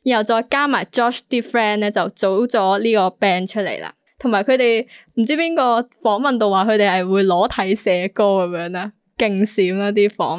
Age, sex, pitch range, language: 10-29, female, 195-245 Hz, Chinese